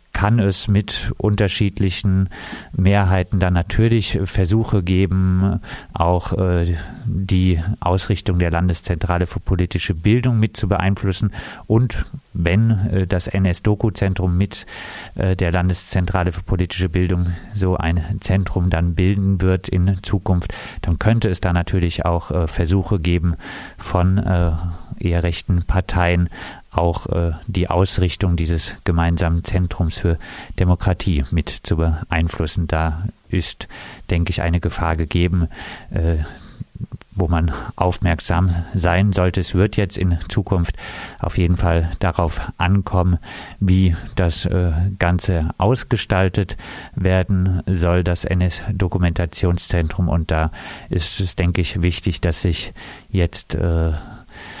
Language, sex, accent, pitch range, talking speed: German, male, German, 85-100 Hz, 120 wpm